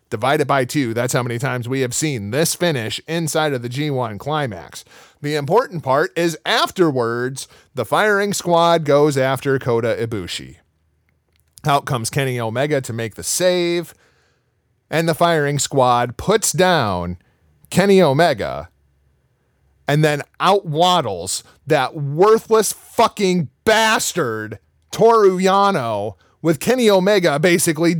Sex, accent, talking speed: male, American, 125 wpm